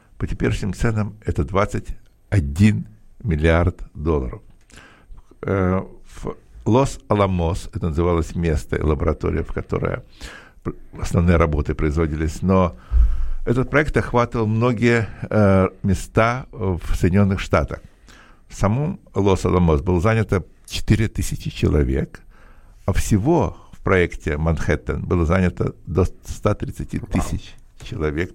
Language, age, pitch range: English, 60-79, 85-110 Hz